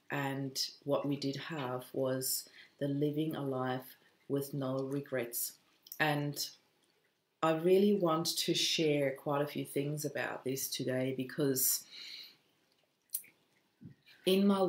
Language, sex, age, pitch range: English, female, 30-49, 135-155 Hz